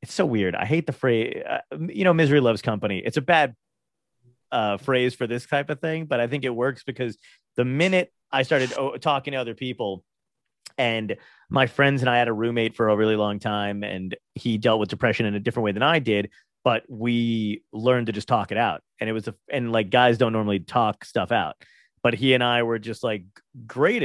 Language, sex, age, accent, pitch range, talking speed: English, male, 30-49, American, 110-145 Hz, 220 wpm